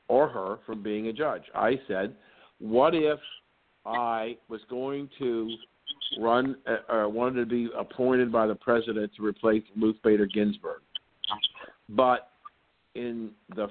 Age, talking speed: 50-69, 140 wpm